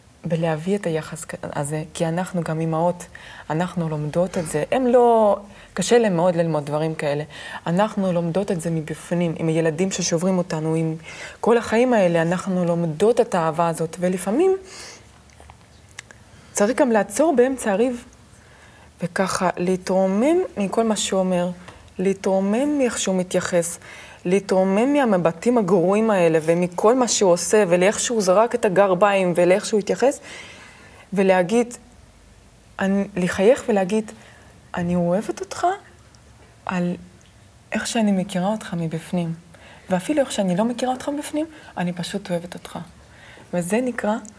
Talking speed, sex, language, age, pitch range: 130 wpm, female, Hebrew, 20-39, 170-220 Hz